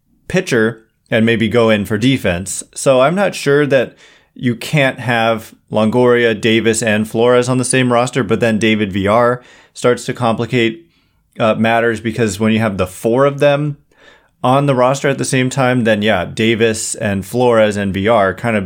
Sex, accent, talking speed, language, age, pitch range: male, American, 180 wpm, English, 30-49, 110-130 Hz